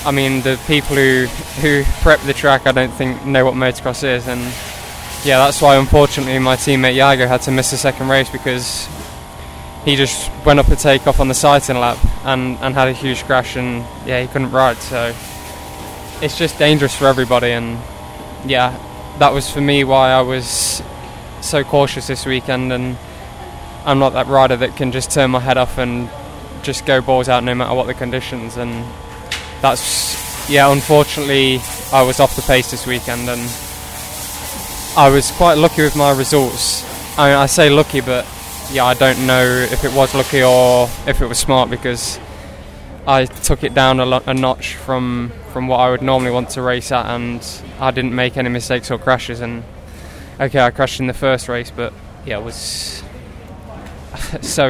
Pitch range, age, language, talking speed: 120-135 Hz, 10-29, English, 185 wpm